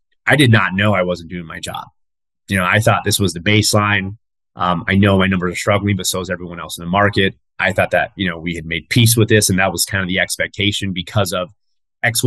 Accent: American